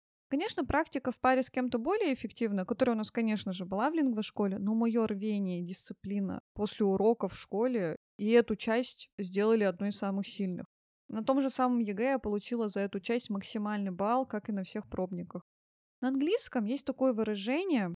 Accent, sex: native, female